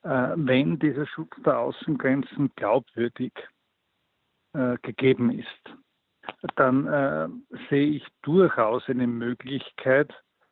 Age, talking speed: 60-79, 90 wpm